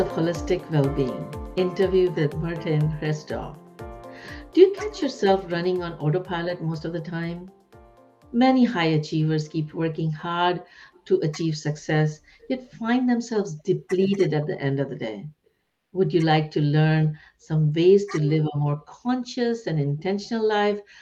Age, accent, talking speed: 60-79, Indian, 150 wpm